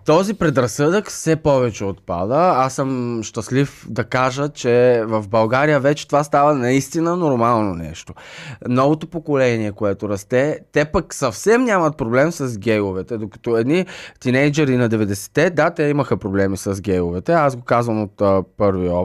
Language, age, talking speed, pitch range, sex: Bulgarian, 20-39, 145 wpm, 110-145 Hz, male